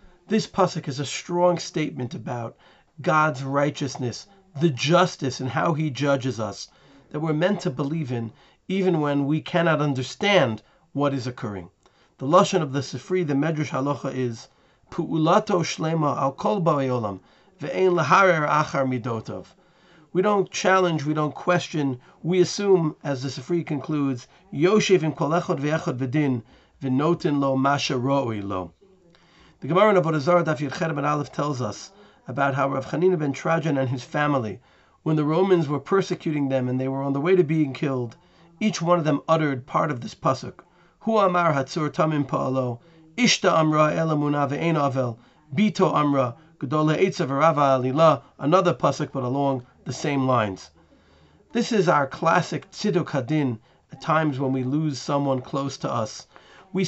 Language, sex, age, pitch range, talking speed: English, male, 40-59, 135-175 Hz, 140 wpm